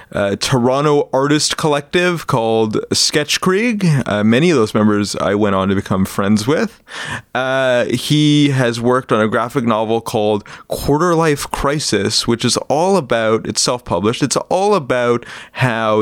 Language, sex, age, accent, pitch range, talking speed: English, male, 30-49, American, 110-145 Hz, 150 wpm